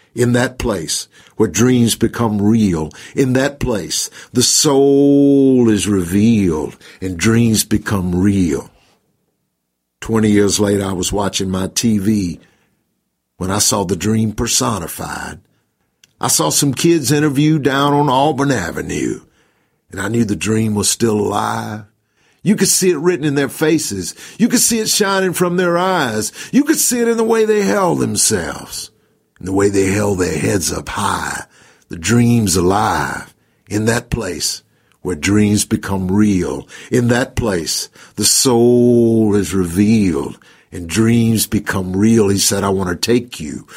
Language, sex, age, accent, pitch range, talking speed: English, male, 50-69, American, 100-140 Hz, 150 wpm